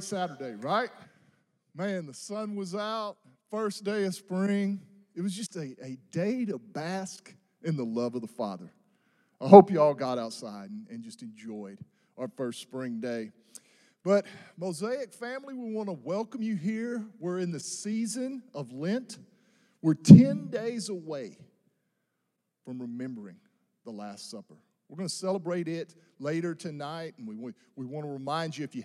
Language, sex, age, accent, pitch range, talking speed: English, male, 40-59, American, 140-210 Hz, 165 wpm